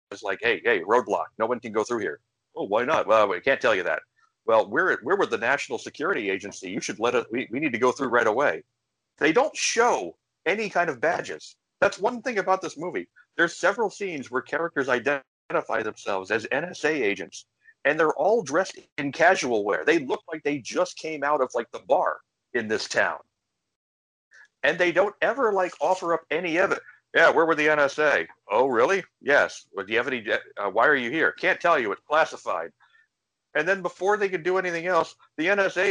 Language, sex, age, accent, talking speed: English, male, 50-69, American, 210 wpm